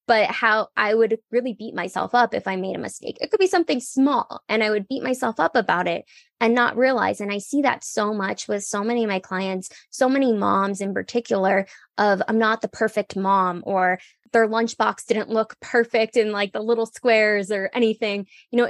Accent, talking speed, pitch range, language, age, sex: American, 215 wpm, 200-240 Hz, English, 10-29, female